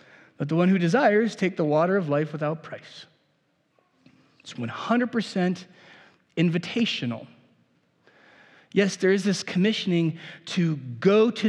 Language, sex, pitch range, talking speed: English, male, 175-225 Hz, 120 wpm